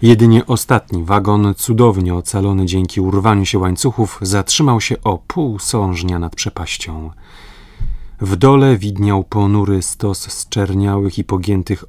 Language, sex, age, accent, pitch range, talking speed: Polish, male, 30-49, native, 90-110 Hz, 125 wpm